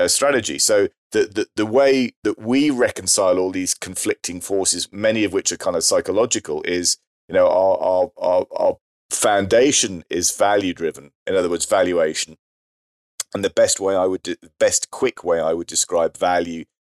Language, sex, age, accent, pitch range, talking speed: English, male, 30-49, British, 85-120 Hz, 180 wpm